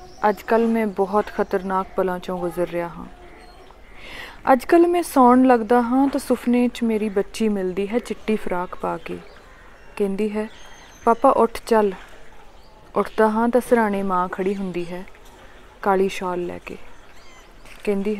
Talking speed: 140 wpm